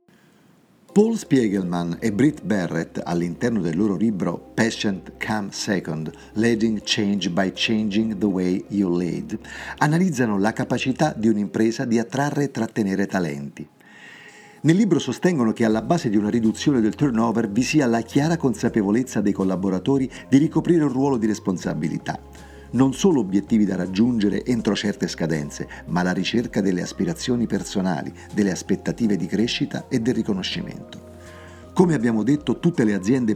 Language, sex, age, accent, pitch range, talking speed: Italian, male, 50-69, native, 95-130 Hz, 145 wpm